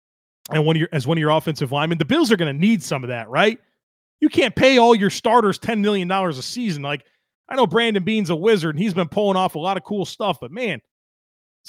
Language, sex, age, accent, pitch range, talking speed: English, male, 30-49, American, 145-195 Hz, 255 wpm